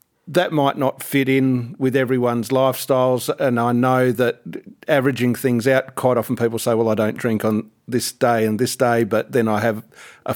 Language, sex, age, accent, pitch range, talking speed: English, male, 50-69, Australian, 115-135 Hz, 195 wpm